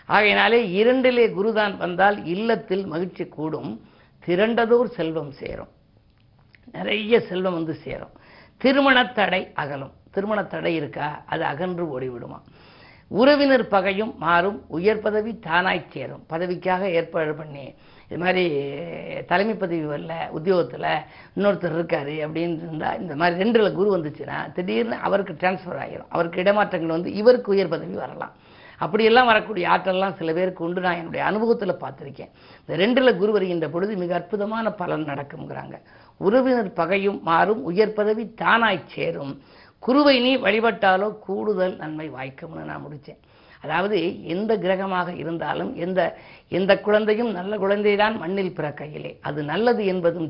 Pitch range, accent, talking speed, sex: 165-215 Hz, native, 130 wpm, female